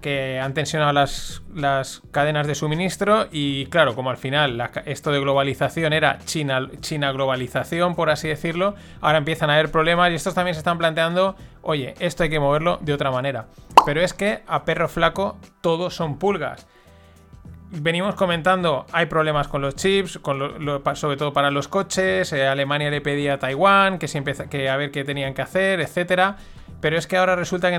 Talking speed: 175 wpm